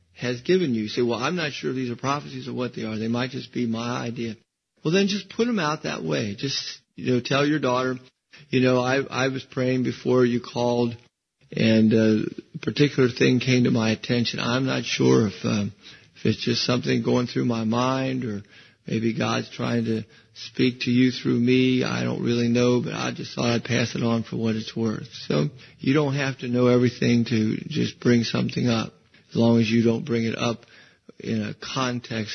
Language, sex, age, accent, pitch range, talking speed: English, male, 50-69, American, 115-135 Hz, 215 wpm